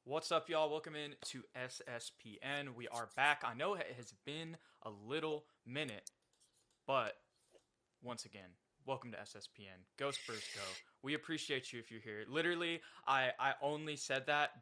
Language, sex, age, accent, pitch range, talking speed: English, male, 20-39, American, 110-140 Hz, 160 wpm